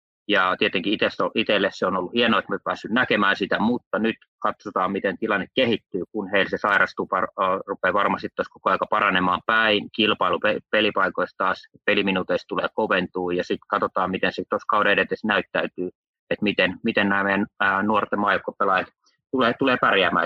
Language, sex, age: Finnish, male, 30-49